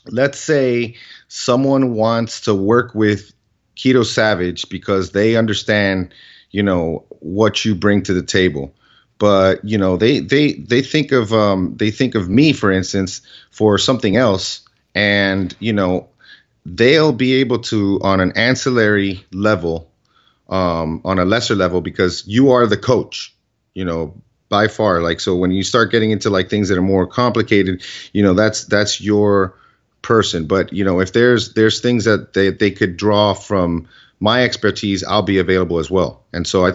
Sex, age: male, 30-49